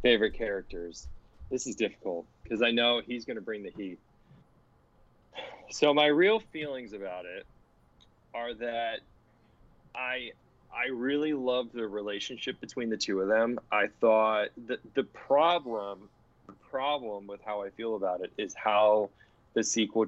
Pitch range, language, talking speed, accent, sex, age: 105-125 Hz, English, 150 wpm, American, male, 20-39